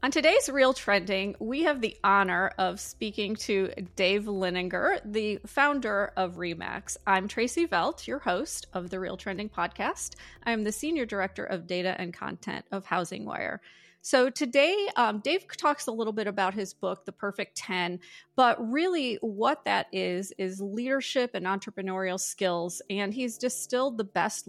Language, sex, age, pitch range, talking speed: English, female, 30-49, 190-230 Hz, 165 wpm